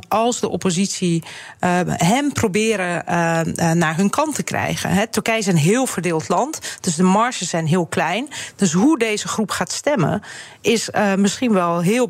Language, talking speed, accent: Dutch, 160 wpm, Dutch